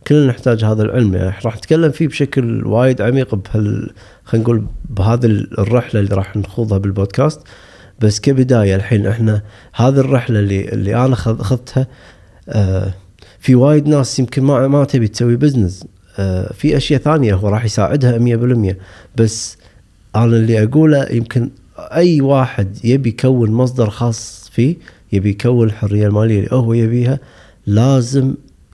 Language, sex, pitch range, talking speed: Arabic, male, 100-130 Hz, 145 wpm